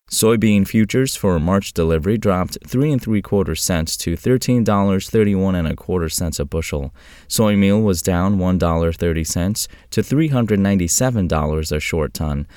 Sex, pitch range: male, 80-110 Hz